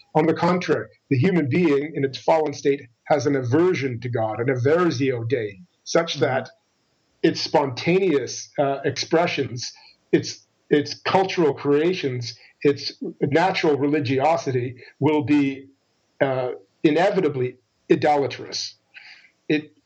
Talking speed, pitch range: 110 wpm, 130-155 Hz